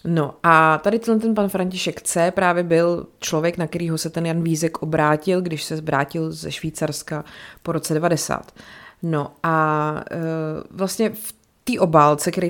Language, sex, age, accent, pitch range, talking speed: Czech, female, 30-49, native, 150-180 Hz, 150 wpm